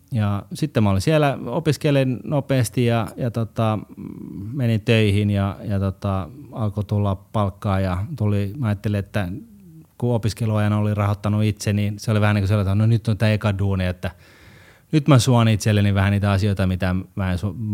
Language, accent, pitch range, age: Finnish, native, 95-110 Hz, 30-49